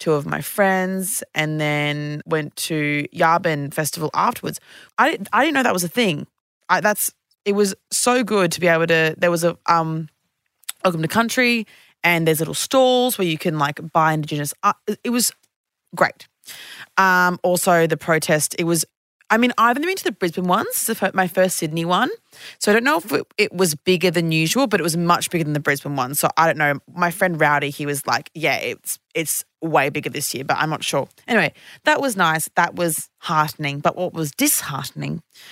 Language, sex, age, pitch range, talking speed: English, female, 20-39, 155-190 Hz, 200 wpm